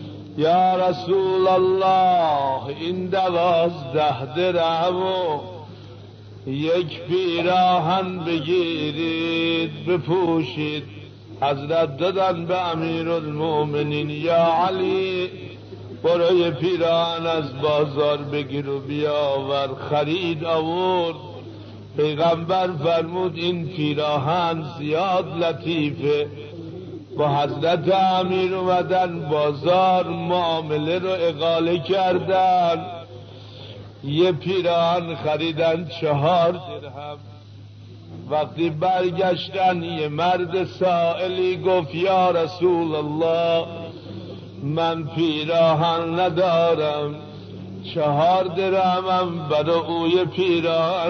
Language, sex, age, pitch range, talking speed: Persian, male, 60-79, 150-180 Hz, 75 wpm